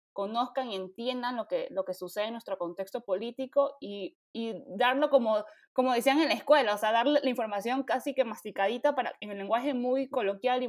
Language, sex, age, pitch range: Spanish, female, 20-39, 200-245 Hz